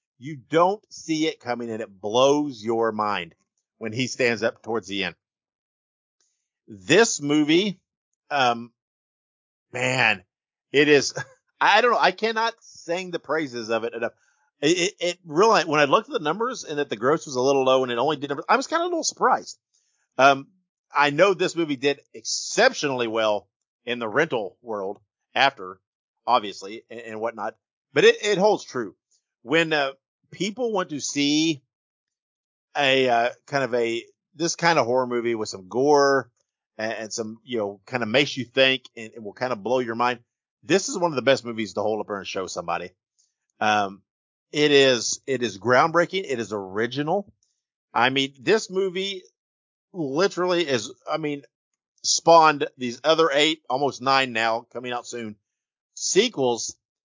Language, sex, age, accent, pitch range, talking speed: English, male, 50-69, American, 115-160 Hz, 170 wpm